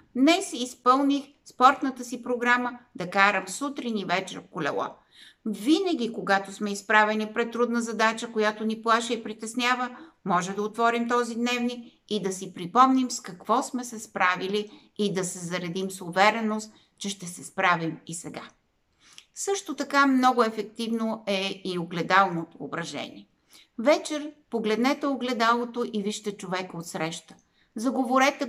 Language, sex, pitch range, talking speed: Bulgarian, female, 190-245 Hz, 140 wpm